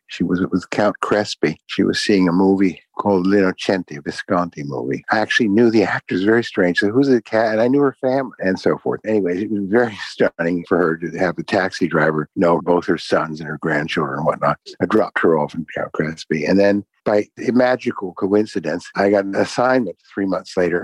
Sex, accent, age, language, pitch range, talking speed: male, American, 60-79, English, 85-105 Hz, 220 wpm